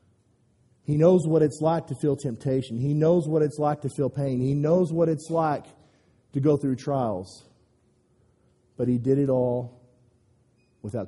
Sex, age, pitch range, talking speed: male, 40-59, 110-135 Hz, 170 wpm